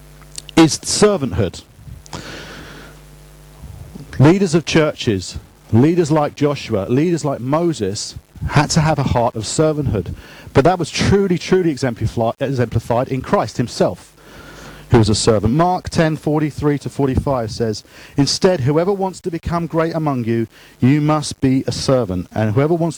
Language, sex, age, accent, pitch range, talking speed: English, male, 40-59, British, 110-150 Hz, 135 wpm